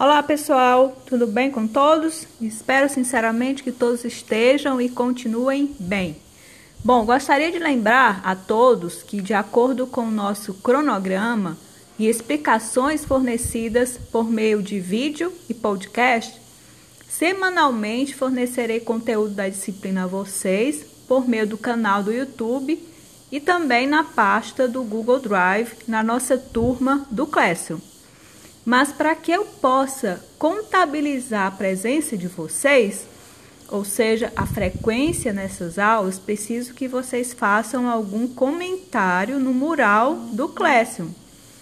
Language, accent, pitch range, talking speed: Portuguese, Brazilian, 220-280 Hz, 125 wpm